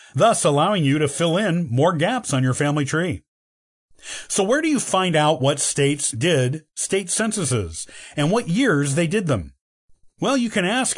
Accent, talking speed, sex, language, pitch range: American, 180 wpm, male, English, 130-185 Hz